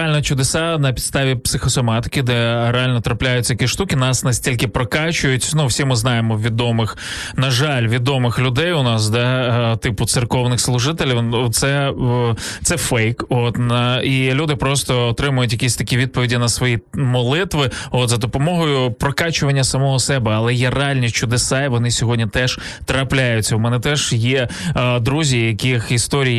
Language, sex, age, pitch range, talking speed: Ukrainian, male, 20-39, 125-150 Hz, 145 wpm